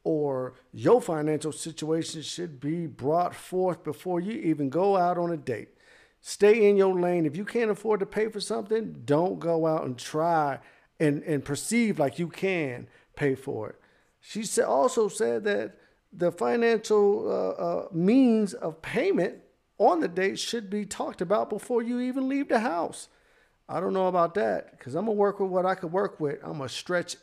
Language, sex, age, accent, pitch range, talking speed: English, male, 50-69, American, 150-205 Hz, 190 wpm